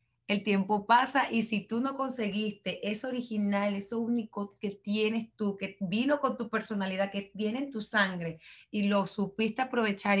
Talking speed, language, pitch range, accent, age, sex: 170 wpm, Spanish, 195-235 Hz, Venezuelan, 30-49, female